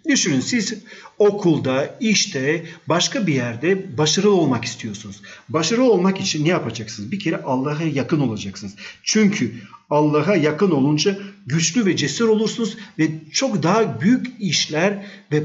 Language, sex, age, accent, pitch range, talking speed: Turkish, male, 50-69, native, 140-195 Hz, 130 wpm